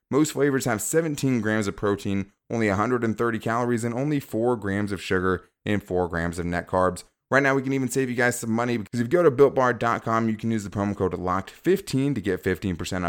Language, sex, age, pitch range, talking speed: English, male, 20-39, 105-130 Hz, 220 wpm